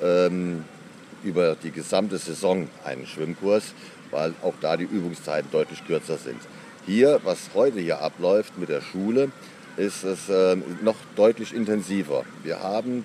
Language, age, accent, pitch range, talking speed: German, 40-59, German, 90-110 Hz, 135 wpm